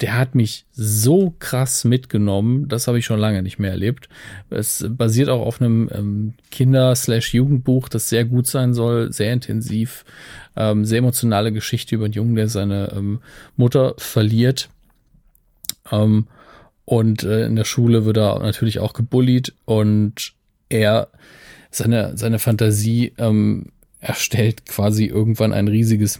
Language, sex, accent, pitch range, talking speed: German, male, German, 105-120 Hz, 140 wpm